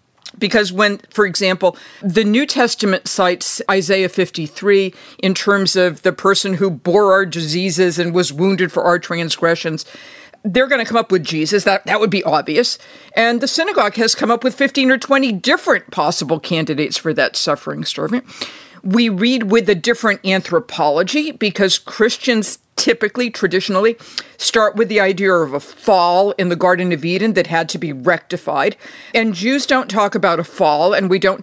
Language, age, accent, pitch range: English, 50-69, American, 175-225 Hz